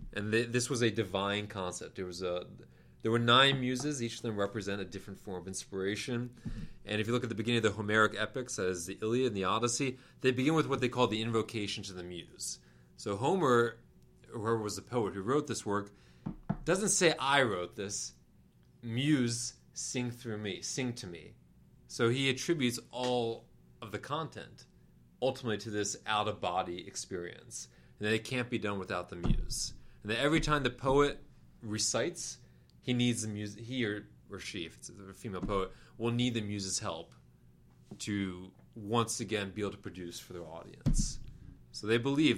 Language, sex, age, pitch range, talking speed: English, male, 30-49, 95-120 Hz, 190 wpm